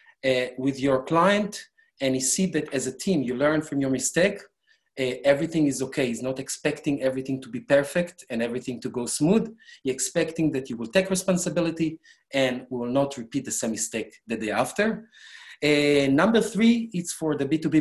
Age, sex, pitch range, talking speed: 40-59, male, 130-175 Hz, 190 wpm